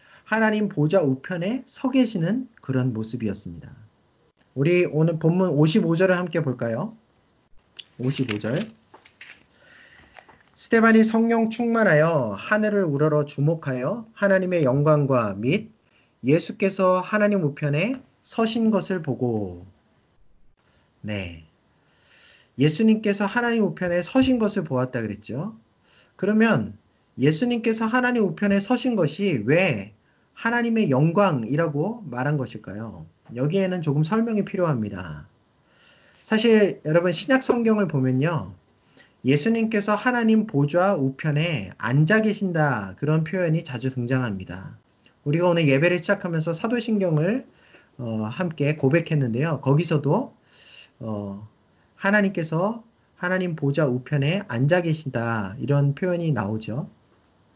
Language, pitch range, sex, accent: Korean, 130-205 Hz, male, native